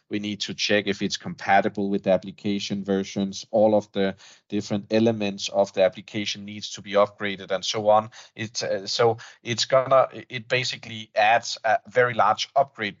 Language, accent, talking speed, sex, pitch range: English, Danish, 175 wpm, male, 95-115 Hz